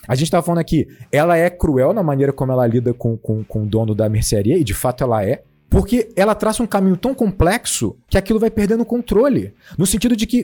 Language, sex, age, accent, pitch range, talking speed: Portuguese, male, 40-59, Brazilian, 115-180 Hz, 235 wpm